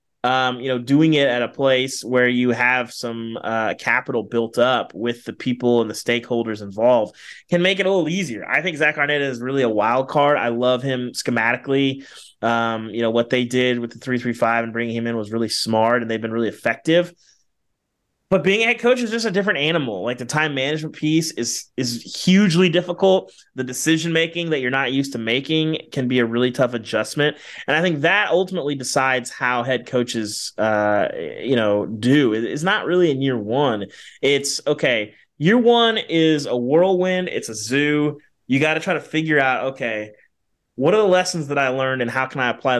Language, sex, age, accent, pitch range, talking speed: English, male, 20-39, American, 115-150 Hz, 205 wpm